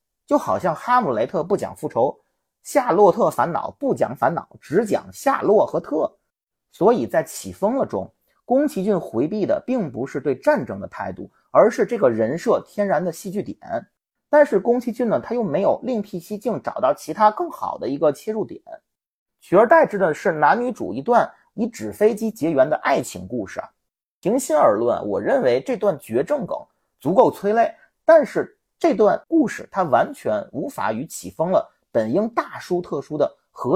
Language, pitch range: Chinese, 190-290 Hz